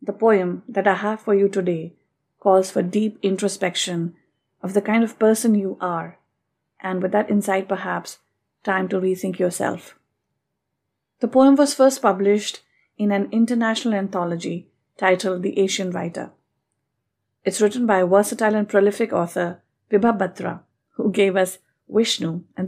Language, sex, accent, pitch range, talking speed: English, female, Indian, 180-220 Hz, 150 wpm